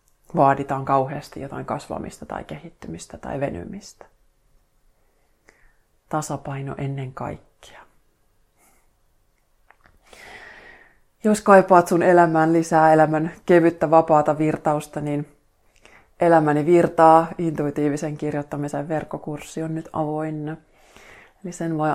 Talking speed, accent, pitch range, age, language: 85 wpm, native, 145-160 Hz, 30-49, Finnish